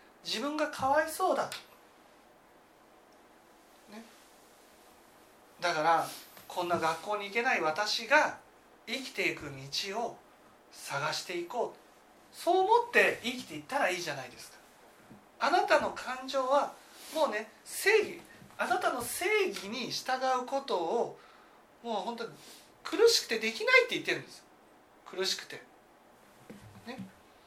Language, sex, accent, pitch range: Japanese, male, native, 205-340 Hz